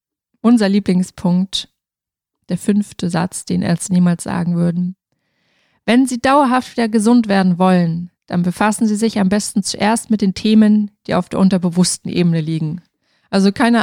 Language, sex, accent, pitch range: German, female, German, 180-215 Hz